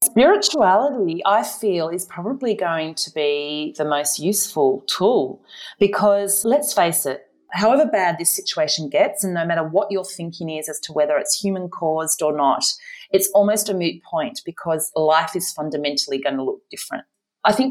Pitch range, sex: 160-245 Hz, female